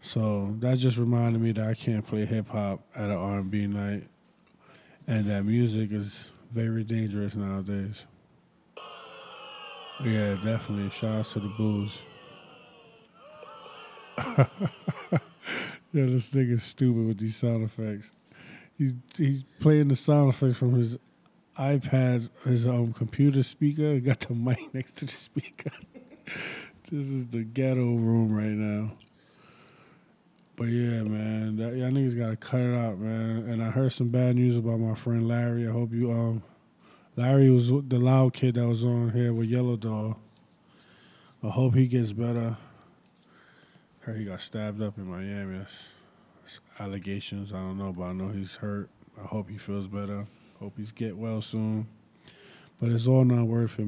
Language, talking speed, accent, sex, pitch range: English, 150 wpm, American, male, 105-125 Hz